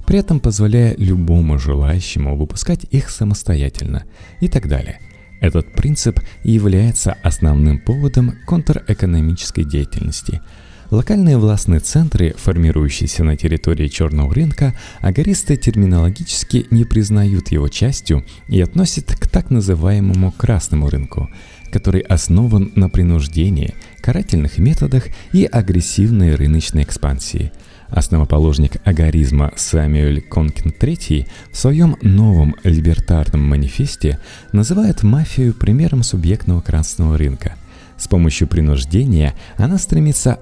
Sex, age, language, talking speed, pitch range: male, 30-49, Russian, 105 wpm, 80-115 Hz